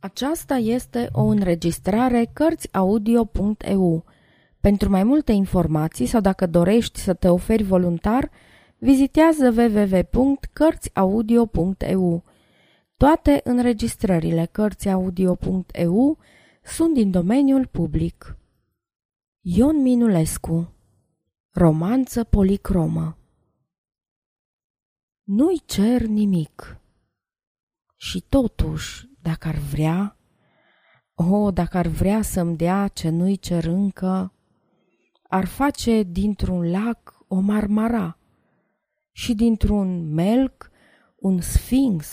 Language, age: Romanian, 20-39